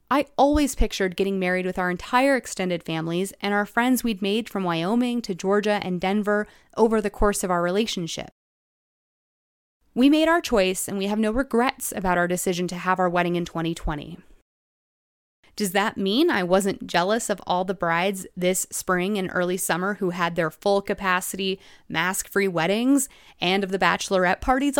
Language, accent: English, American